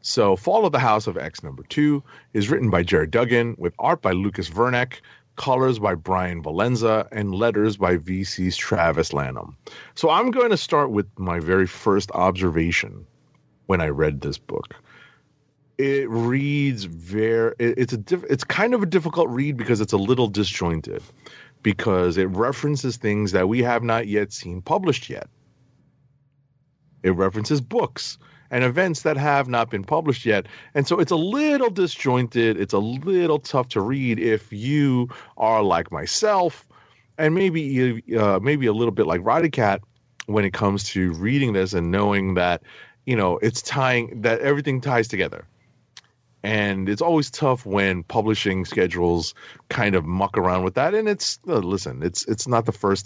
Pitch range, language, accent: 95-140 Hz, English, American